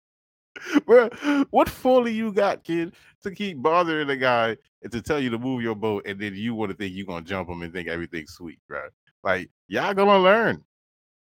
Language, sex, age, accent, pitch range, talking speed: English, male, 20-39, American, 85-140 Hz, 200 wpm